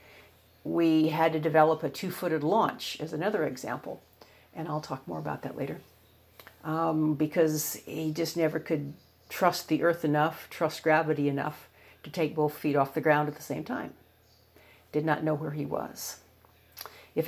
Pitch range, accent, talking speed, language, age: 150-165 Hz, American, 165 wpm, English, 50-69